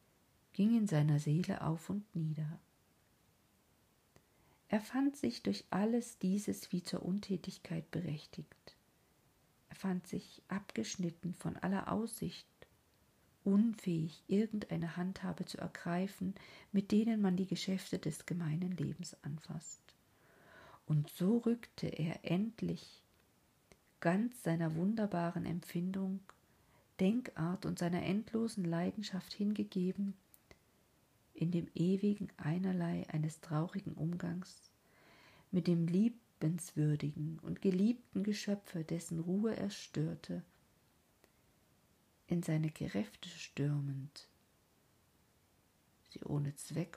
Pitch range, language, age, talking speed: 165-195 Hz, German, 50-69, 100 wpm